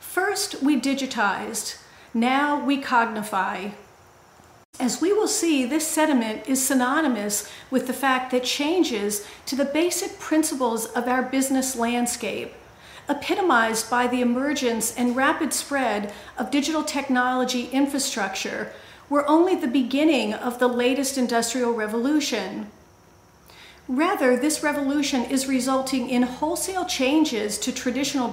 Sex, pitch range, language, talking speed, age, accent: female, 240-290 Hz, English, 120 wpm, 50-69, American